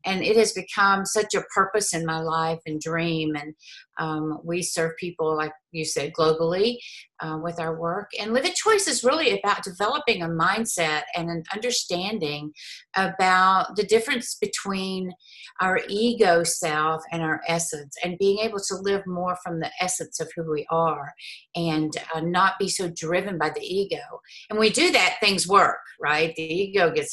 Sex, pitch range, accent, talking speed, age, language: female, 170-220 Hz, American, 175 wpm, 50-69, English